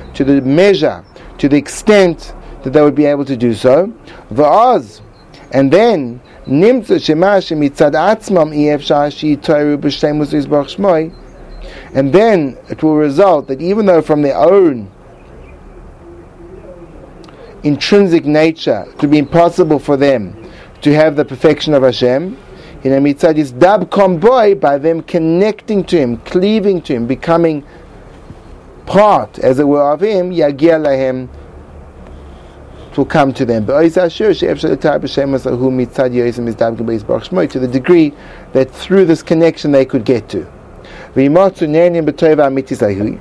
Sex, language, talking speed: male, English, 100 wpm